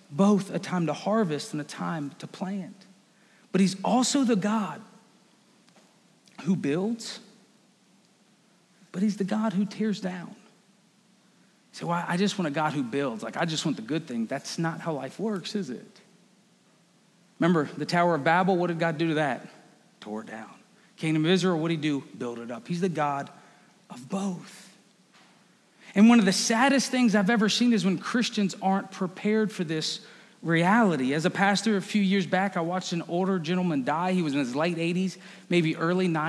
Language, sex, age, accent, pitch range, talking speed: English, male, 40-59, American, 165-205 Hz, 185 wpm